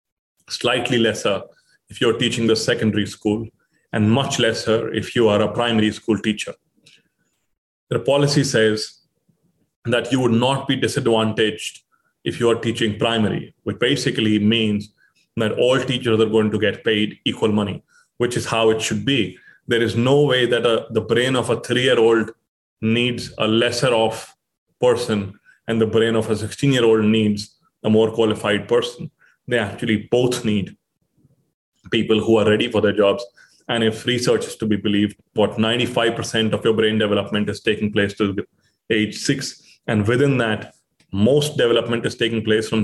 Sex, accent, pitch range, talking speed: male, Indian, 110-120 Hz, 160 wpm